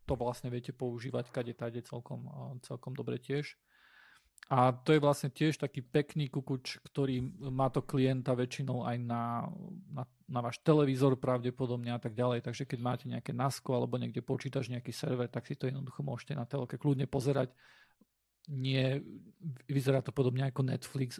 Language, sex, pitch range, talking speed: Slovak, male, 125-145 Hz, 170 wpm